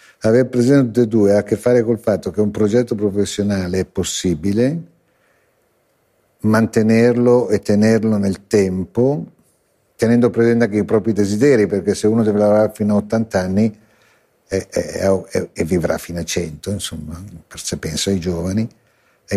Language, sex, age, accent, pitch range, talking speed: Italian, male, 60-79, native, 90-115 Hz, 150 wpm